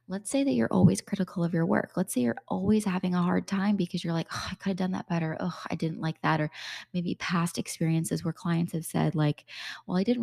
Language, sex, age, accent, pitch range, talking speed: English, female, 20-39, American, 165-195 Hz, 260 wpm